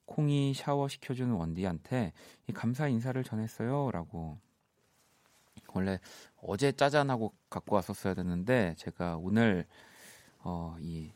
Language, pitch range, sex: Korean, 90-125 Hz, male